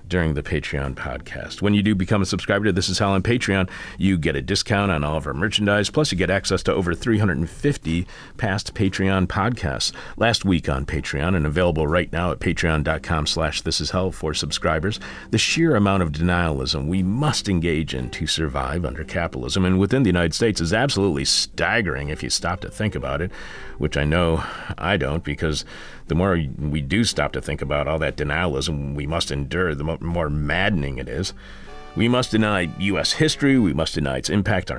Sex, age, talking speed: male, 40-59, 195 wpm